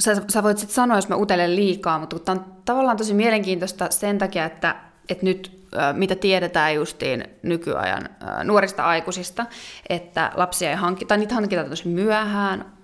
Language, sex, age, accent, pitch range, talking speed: Finnish, female, 20-39, native, 165-195 Hz, 155 wpm